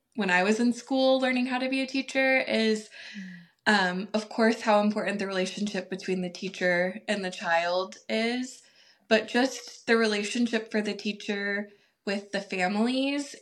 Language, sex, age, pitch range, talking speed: English, female, 20-39, 190-230 Hz, 160 wpm